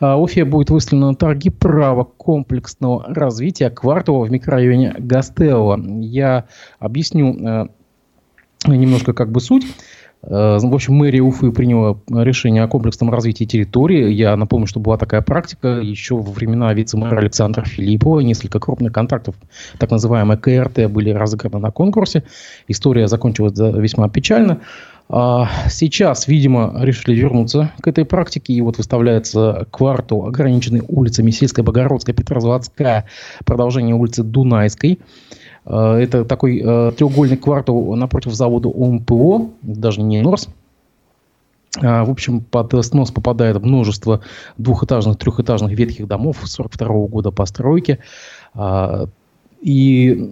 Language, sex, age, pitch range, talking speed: Russian, male, 20-39, 110-135 Hz, 115 wpm